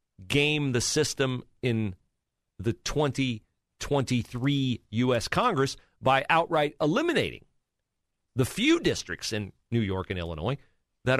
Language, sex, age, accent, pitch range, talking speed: English, male, 40-59, American, 100-130 Hz, 105 wpm